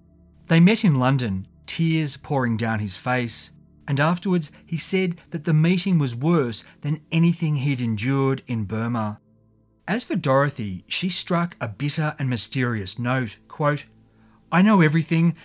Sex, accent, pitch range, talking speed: male, Australian, 115-165 Hz, 150 wpm